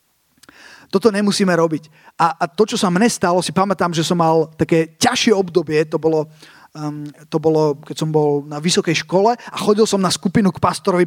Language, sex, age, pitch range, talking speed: Slovak, male, 30-49, 180-220 Hz, 195 wpm